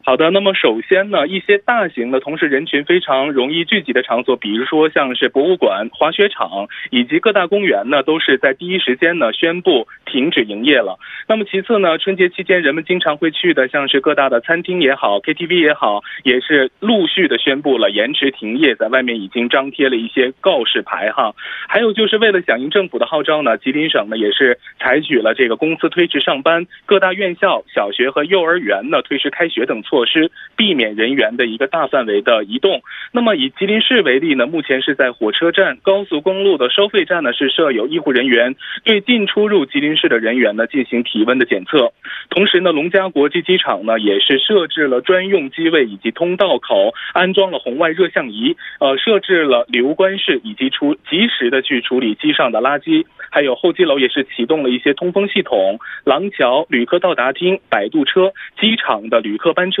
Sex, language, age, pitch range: male, Korean, 20-39, 140-215 Hz